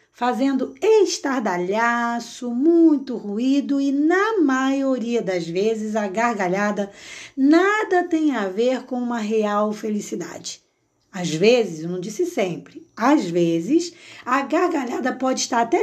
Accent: Brazilian